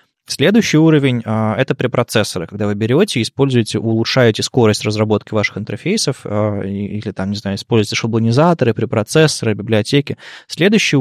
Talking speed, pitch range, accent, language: 135 wpm, 105-140 Hz, native, Russian